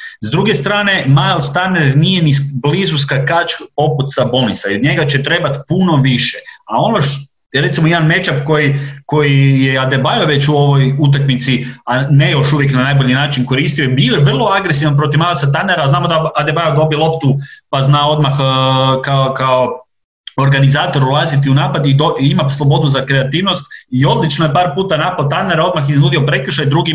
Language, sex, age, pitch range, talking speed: Croatian, male, 30-49, 135-165 Hz, 180 wpm